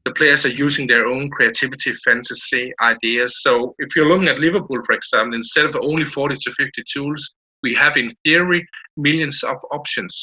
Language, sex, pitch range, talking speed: English, male, 125-160 Hz, 180 wpm